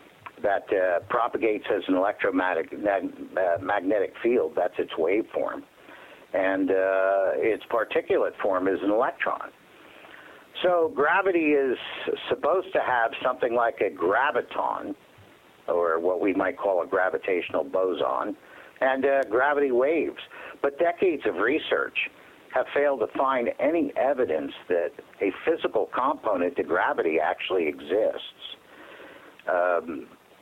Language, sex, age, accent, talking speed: English, male, 60-79, American, 125 wpm